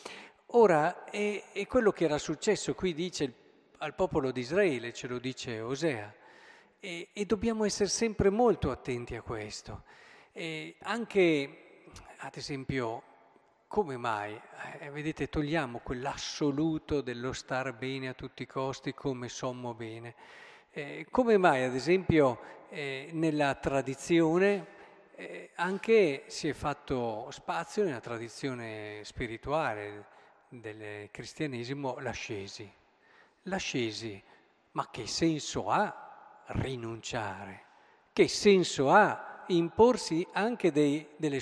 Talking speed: 110 wpm